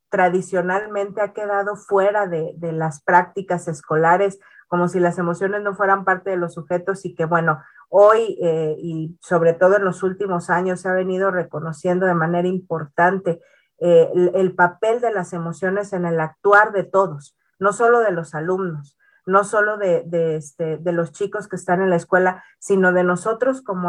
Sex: female